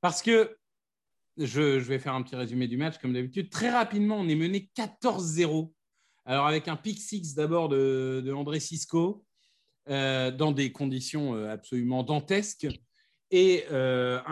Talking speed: 155 wpm